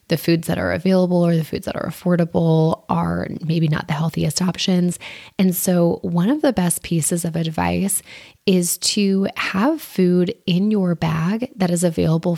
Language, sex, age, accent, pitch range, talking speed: English, female, 20-39, American, 165-195 Hz, 175 wpm